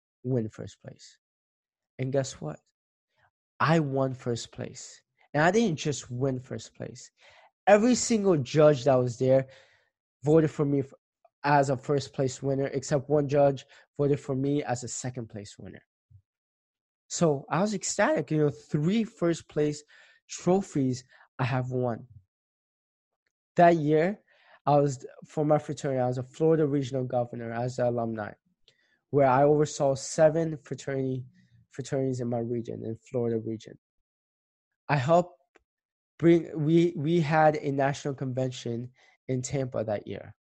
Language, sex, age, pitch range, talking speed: English, male, 20-39, 125-150 Hz, 140 wpm